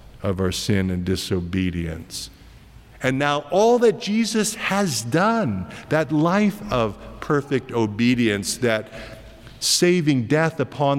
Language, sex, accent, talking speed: English, male, American, 115 wpm